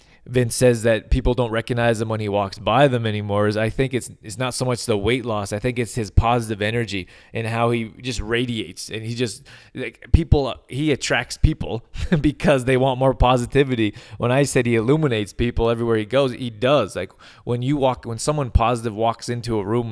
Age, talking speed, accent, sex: 20-39, 210 wpm, American, male